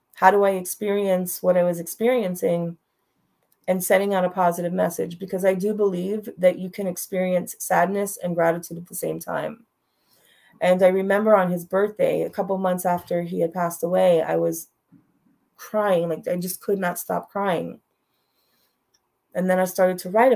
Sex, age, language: female, 30-49, English